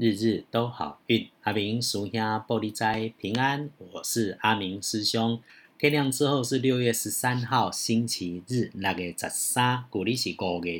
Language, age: Chinese, 50-69